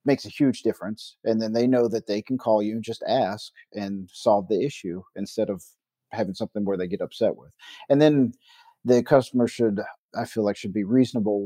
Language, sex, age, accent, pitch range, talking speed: English, male, 50-69, American, 105-125 Hz, 210 wpm